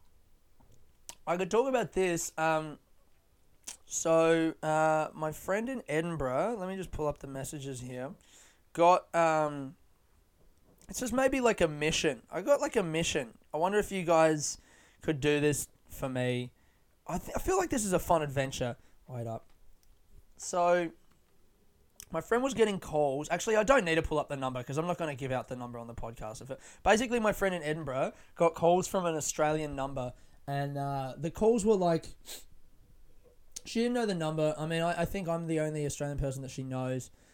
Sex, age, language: male, 20-39, English